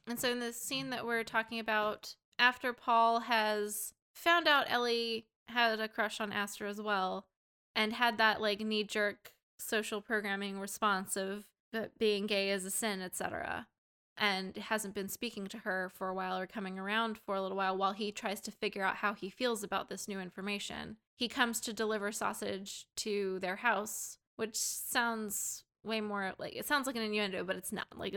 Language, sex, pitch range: English, female, 200-225 Hz